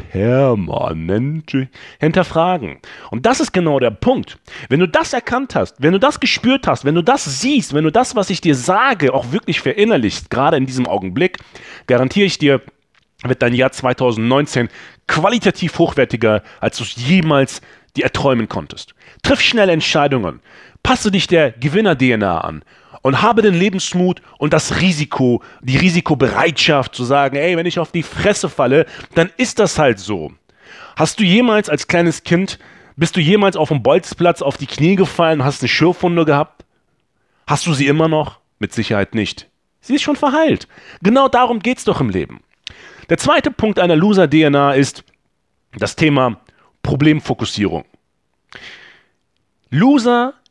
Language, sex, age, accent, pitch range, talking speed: German, male, 30-49, German, 130-195 Hz, 160 wpm